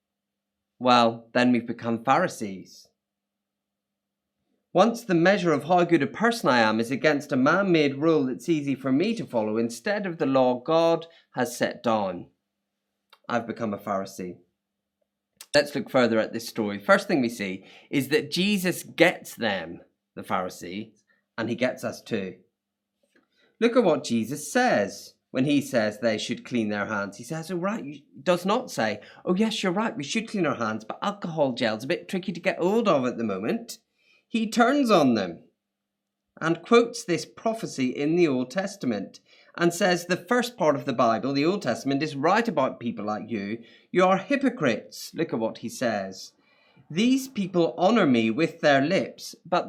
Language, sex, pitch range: English, male, 115-190 Hz